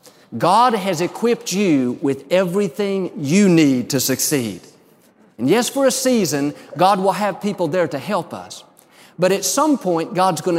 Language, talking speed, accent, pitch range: English, 165 wpm, American, 145-180 Hz